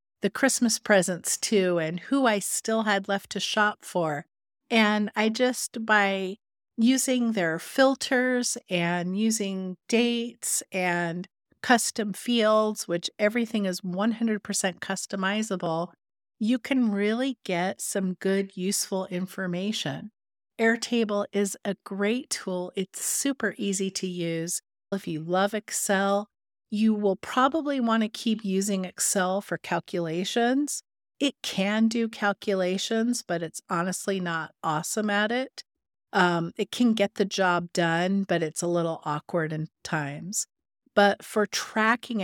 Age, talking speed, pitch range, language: 50-69, 130 wpm, 180-220 Hz, English